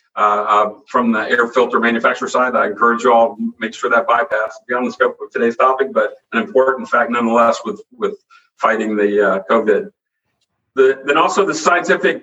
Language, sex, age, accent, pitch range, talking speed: English, male, 50-69, American, 120-150 Hz, 180 wpm